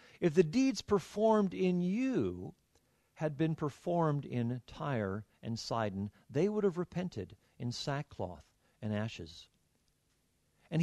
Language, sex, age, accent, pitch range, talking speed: Danish, male, 50-69, American, 115-170 Hz, 120 wpm